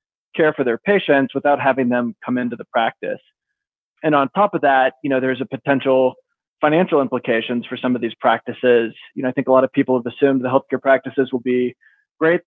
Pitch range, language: 125-145 Hz, English